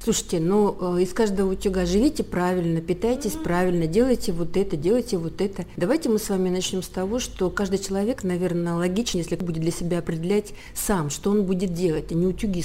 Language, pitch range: Russian, 175-210 Hz